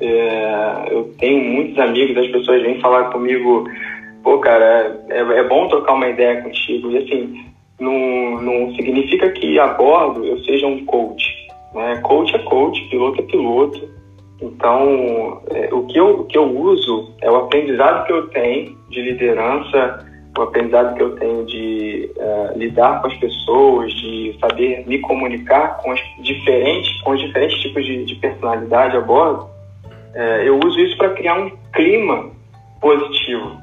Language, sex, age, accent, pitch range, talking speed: Portuguese, male, 20-39, Brazilian, 110-145 Hz, 160 wpm